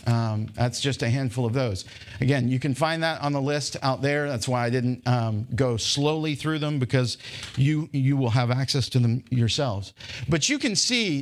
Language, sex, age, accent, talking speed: English, male, 50-69, American, 210 wpm